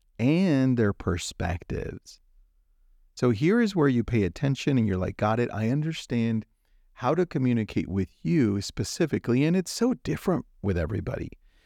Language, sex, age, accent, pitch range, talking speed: English, male, 40-59, American, 95-135 Hz, 150 wpm